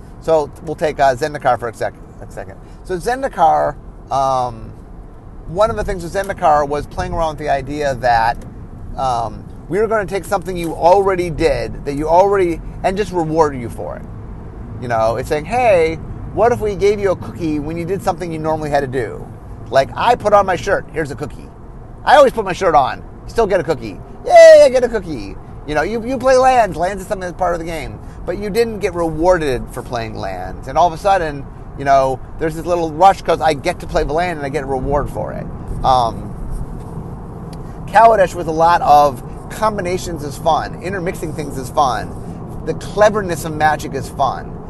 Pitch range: 130-180 Hz